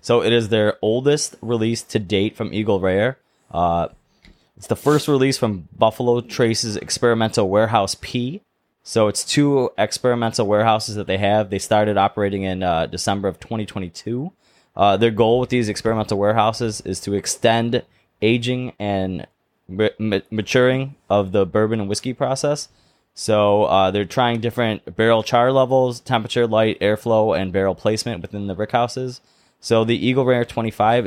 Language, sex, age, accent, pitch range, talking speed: English, male, 20-39, American, 100-120 Hz, 155 wpm